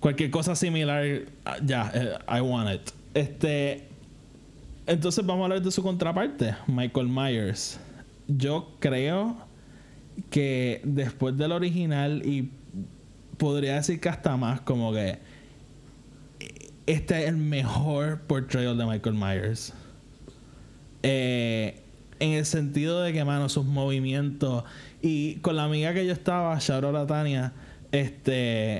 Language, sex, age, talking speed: Spanish, male, 20-39, 125 wpm